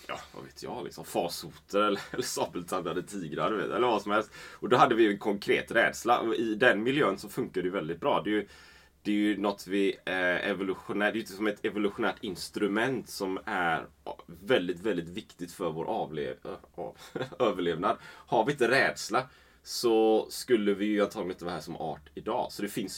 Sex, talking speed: male, 190 wpm